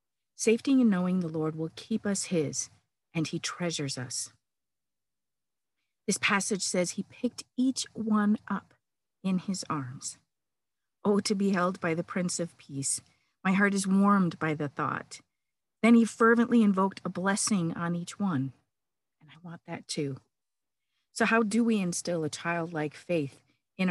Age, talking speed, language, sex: 50-69, 160 wpm, English, female